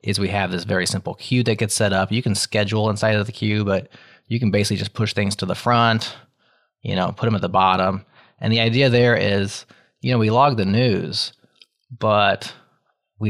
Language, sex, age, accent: English, male, 20-39, American